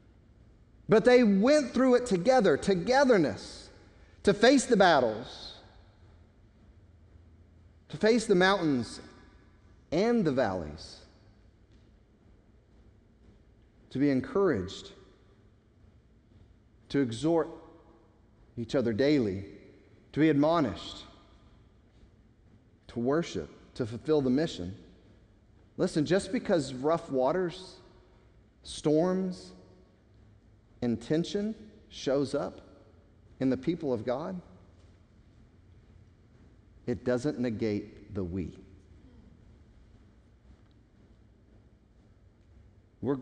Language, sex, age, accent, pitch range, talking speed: English, male, 40-59, American, 100-140 Hz, 75 wpm